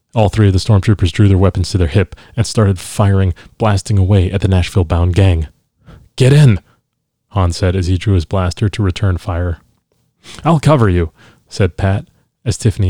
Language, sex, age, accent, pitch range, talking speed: English, male, 30-49, American, 90-110 Hz, 180 wpm